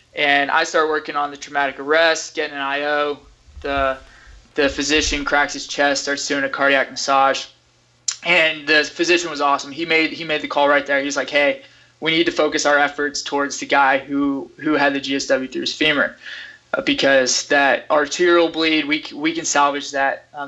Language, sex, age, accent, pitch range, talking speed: English, male, 20-39, American, 140-165 Hz, 190 wpm